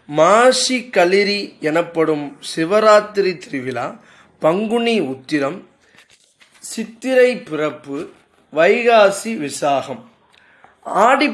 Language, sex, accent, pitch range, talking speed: Tamil, male, native, 145-215 Hz, 65 wpm